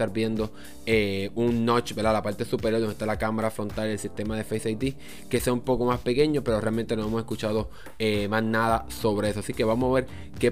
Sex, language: male, Spanish